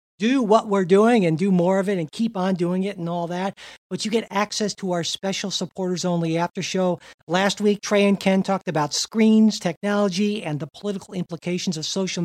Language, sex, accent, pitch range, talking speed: English, male, American, 165-205 Hz, 210 wpm